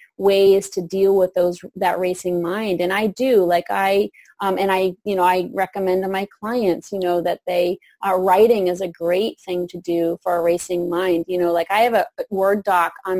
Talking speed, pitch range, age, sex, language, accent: 220 wpm, 180-215 Hz, 30-49, female, English, American